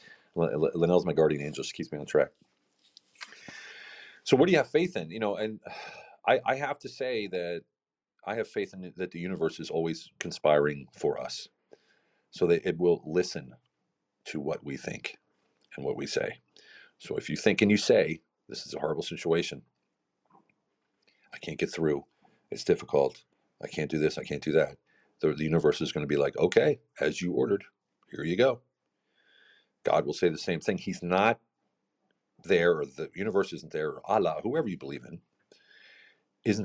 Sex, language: male, English